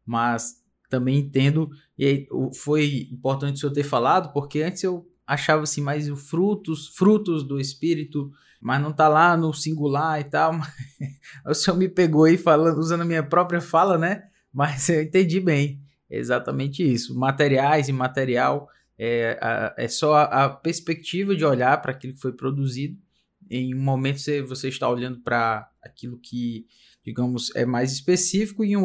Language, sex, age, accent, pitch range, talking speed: Portuguese, male, 20-39, Brazilian, 125-160 Hz, 165 wpm